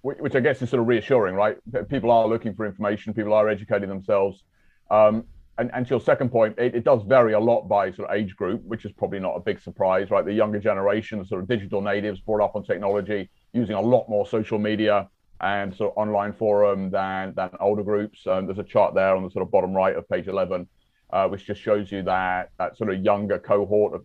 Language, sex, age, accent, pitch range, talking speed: English, male, 30-49, British, 95-110 Hz, 235 wpm